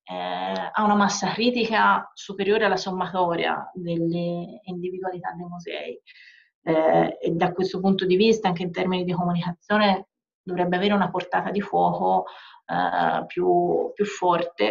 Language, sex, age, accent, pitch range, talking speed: Italian, female, 30-49, native, 180-205 Hz, 140 wpm